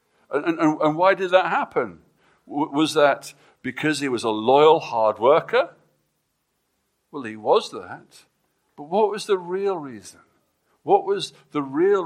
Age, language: 60-79, English